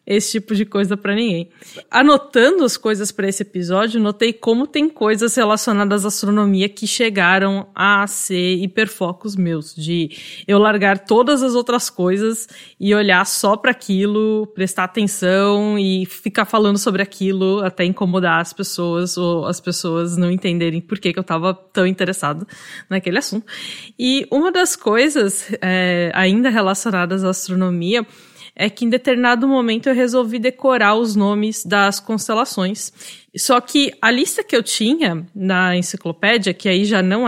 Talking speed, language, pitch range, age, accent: 155 wpm, Portuguese, 185-230 Hz, 20-39, Brazilian